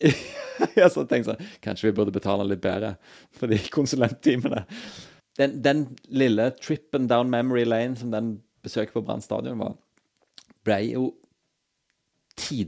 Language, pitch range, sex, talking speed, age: English, 95-110 Hz, male, 135 wpm, 30-49